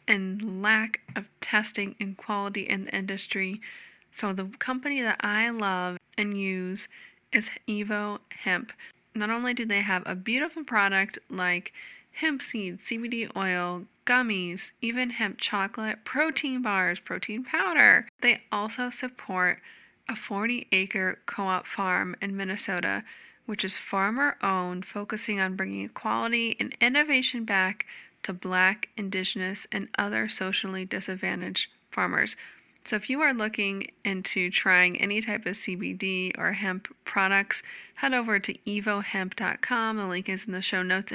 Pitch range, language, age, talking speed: 190-230 Hz, English, 20-39, 140 wpm